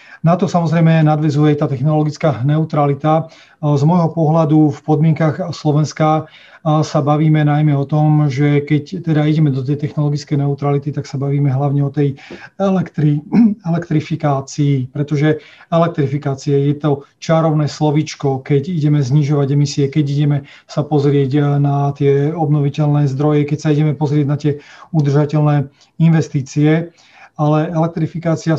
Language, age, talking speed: Slovak, 30-49, 130 wpm